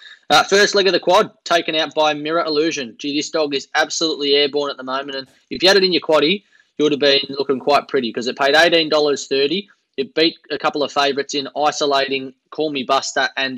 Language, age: English, 20-39